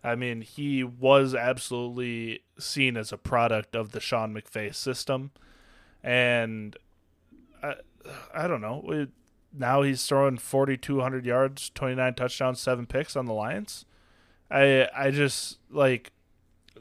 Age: 20-39